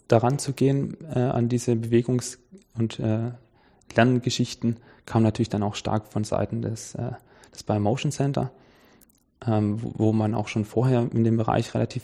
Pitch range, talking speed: 110-125 Hz, 170 wpm